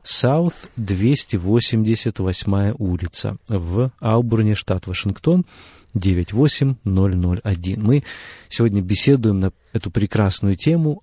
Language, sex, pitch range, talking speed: Russian, male, 95-125 Hz, 80 wpm